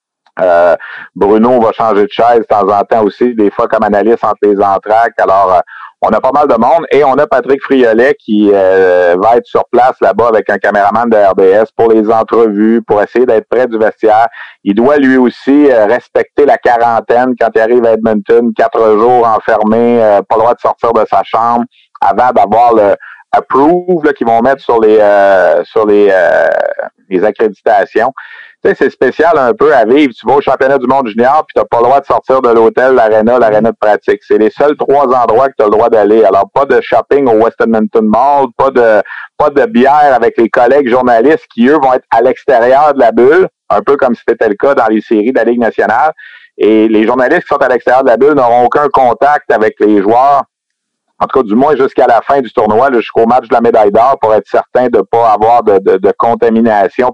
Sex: male